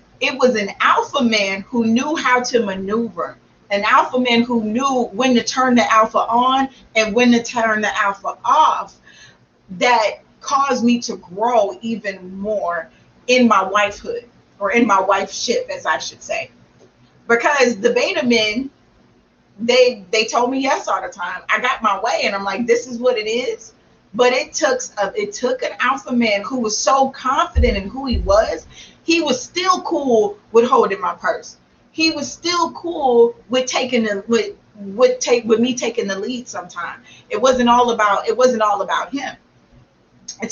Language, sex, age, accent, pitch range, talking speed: English, female, 40-59, American, 215-275 Hz, 180 wpm